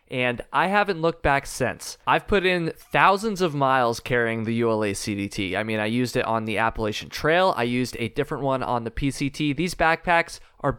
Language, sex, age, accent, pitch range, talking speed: English, male, 20-39, American, 125-180 Hz, 200 wpm